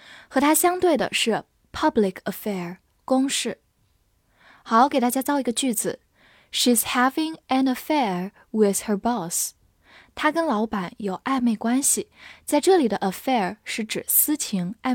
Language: Chinese